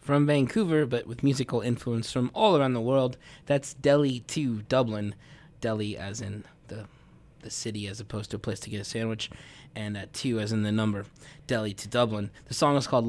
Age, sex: 20-39, male